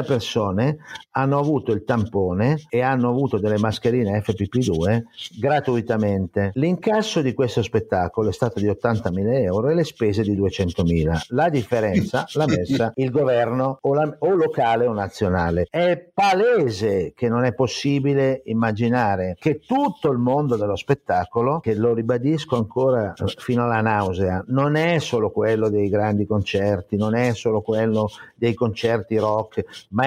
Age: 50-69